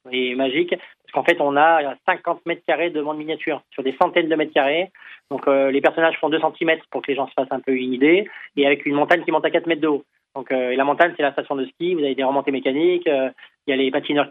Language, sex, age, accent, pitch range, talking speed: French, male, 20-39, French, 135-155 Hz, 285 wpm